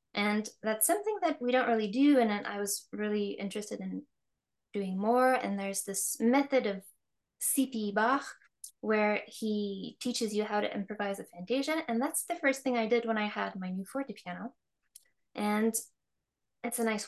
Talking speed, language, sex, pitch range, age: 175 wpm, English, female, 205-255 Hz, 10-29